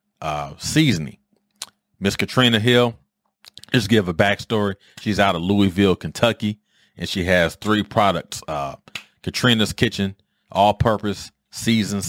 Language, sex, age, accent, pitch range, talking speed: English, male, 30-49, American, 85-110 Hz, 125 wpm